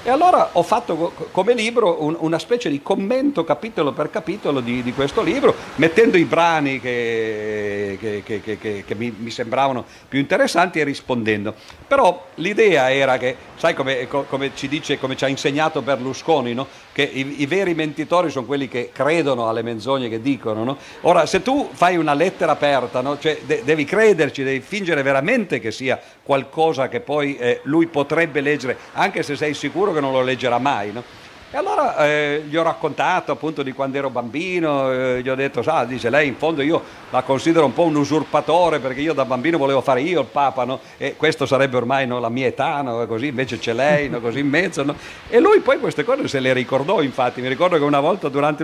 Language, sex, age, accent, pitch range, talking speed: Italian, male, 50-69, native, 130-160 Hz, 200 wpm